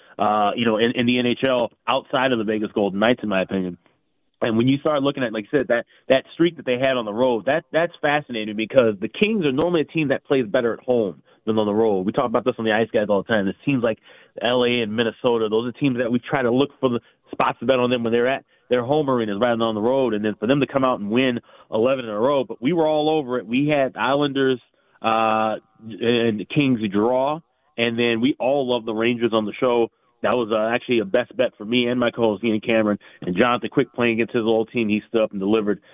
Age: 30-49